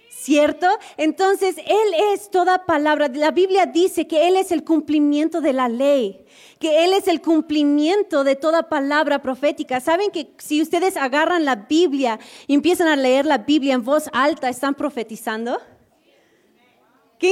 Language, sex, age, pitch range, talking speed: Spanish, female, 30-49, 250-345 Hz, 155 wpm